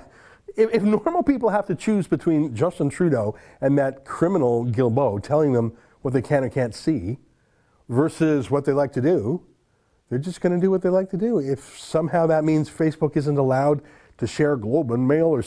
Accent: American